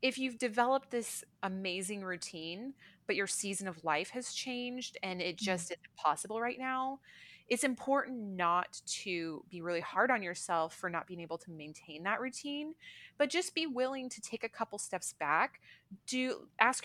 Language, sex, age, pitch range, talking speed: English, female, 20-39, 170-230 Hz, 175 wpm